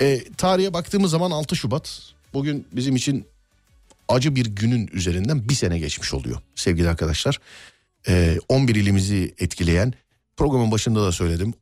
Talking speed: 140 wpm